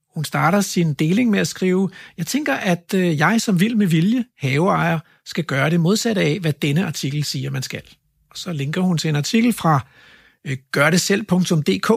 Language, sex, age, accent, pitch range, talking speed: Danish, male, 60-79, native, 155-205 Hz, 180 wpm